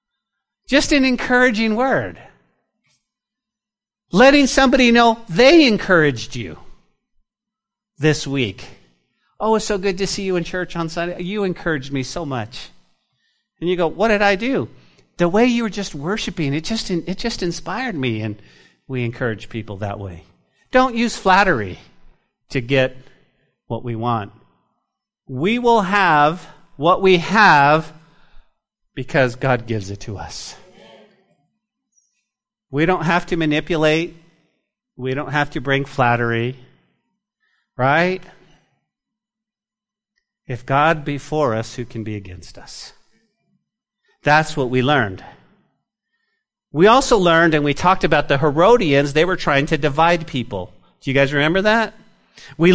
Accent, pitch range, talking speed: American, 135-210 Hz, 135 wpm